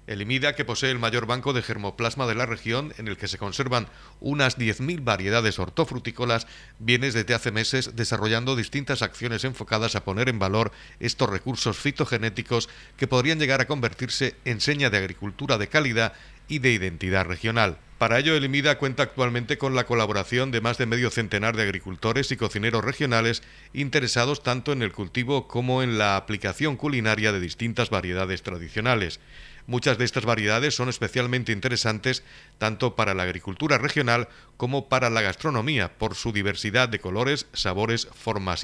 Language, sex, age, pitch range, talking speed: Spanish, male, 50-69, 105-130 Hz, 165 wpm